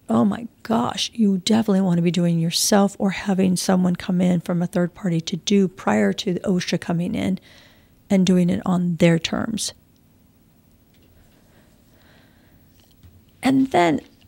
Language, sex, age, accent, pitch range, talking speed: English, female, 50-69, American, 180-220 Hz, 145 wpm